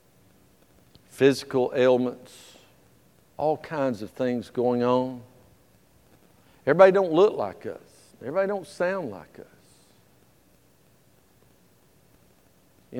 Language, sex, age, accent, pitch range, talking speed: English, male, 50-69, American, 130-195 Hz, 90 wpm